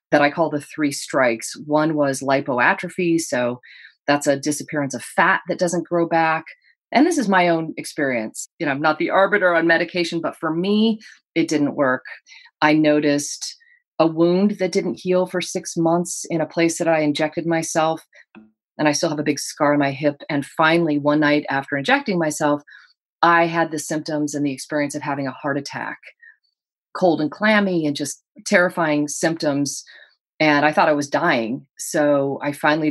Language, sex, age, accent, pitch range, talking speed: English, female, 30-49, American, 145-180 Hz, 185 wpm